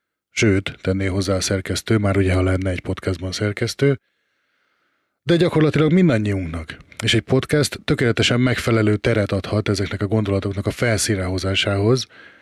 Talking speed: 130 wpm